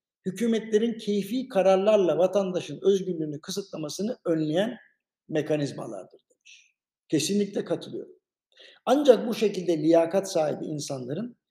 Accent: native